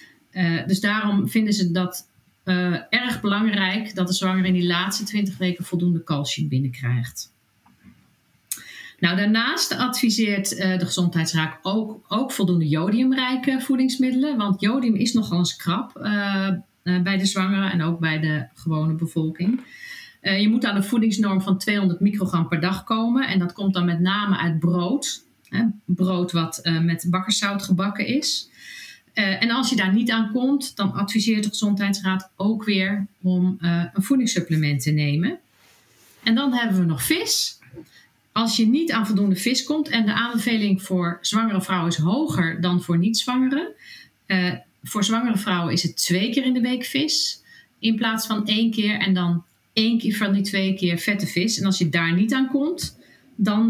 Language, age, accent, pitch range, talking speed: Dutch, 50-69, Dutch, 180-225 Hz, 175 wpm